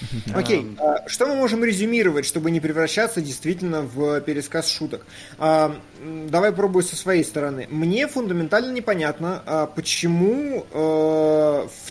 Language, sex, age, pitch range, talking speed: Russian, male, 20-39, 150-185 Hz, 110 wpm